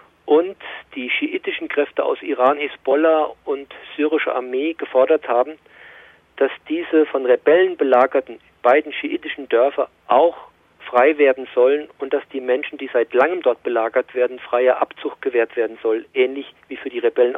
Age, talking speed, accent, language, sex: 40-59, 150 wpm, German, German, male